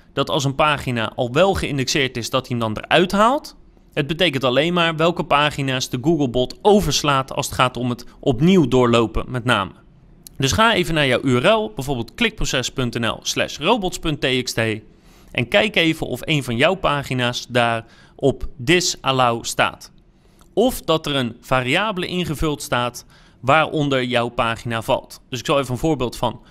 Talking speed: 165 wpm